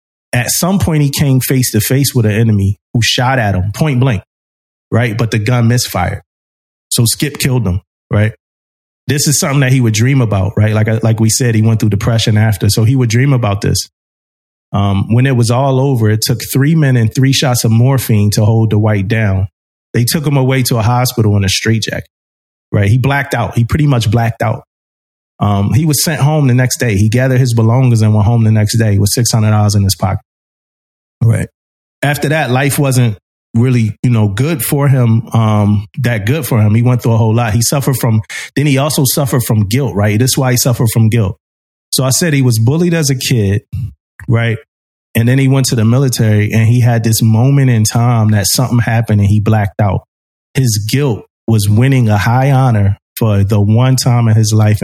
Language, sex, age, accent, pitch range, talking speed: English, male, 30-49, American, 105-130 Hz, 215 wpm